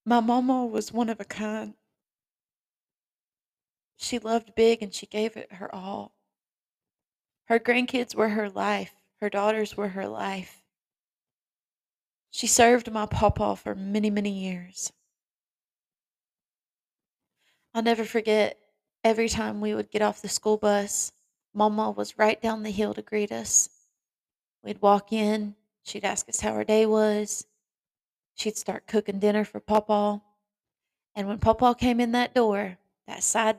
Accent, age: American, 30-49